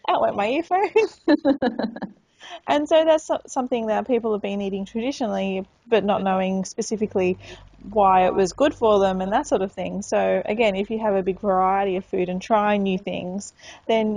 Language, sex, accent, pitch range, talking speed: English, female, Australian, 190-225 Hz, 185 wpm